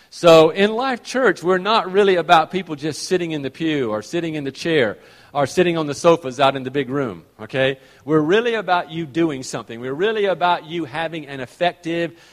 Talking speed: 210 wpm